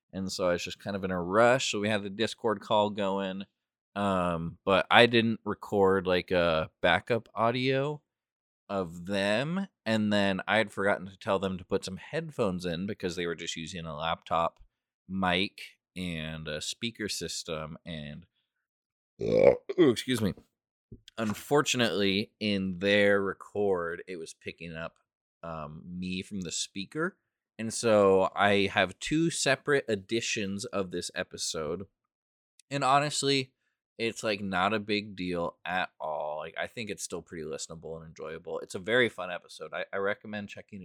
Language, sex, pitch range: English, male, 95-130 Hz